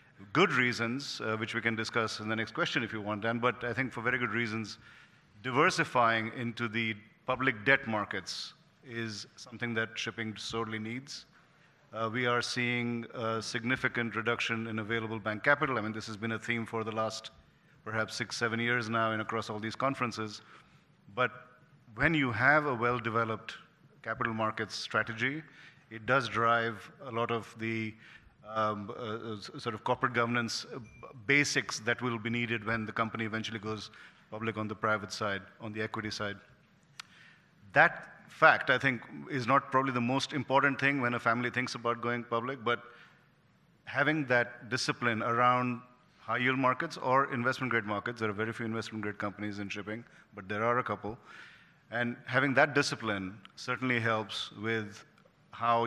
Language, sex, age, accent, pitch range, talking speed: English, male, 50-69, Indian, 110-125 Hz, 170 wpm